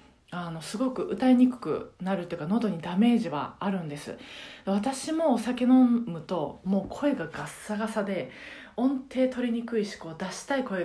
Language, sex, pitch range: Japanese, female, 185-260 Hz